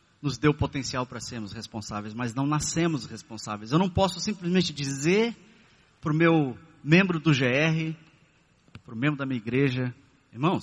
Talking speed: 160 wpm